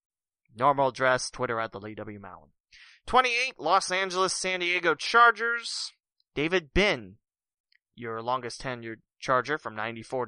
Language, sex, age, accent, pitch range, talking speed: English, male, 30-49, American, 125-175 Hz, 130 wpm